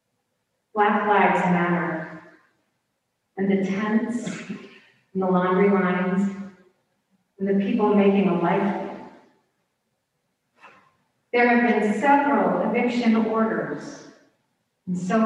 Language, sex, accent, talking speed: English, female, American, 95 wpm